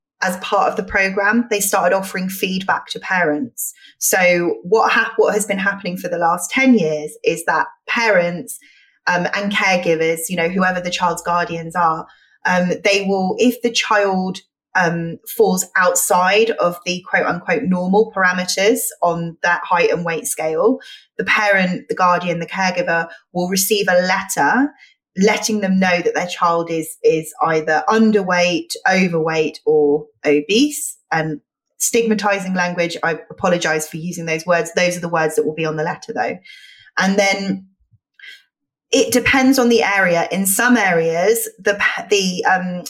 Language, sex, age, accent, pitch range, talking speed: English, female, 20-39, British, 170-215 Hz, 155 wpm